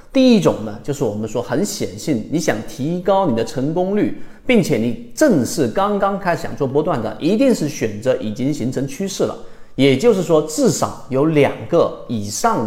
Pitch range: 115-185 Hz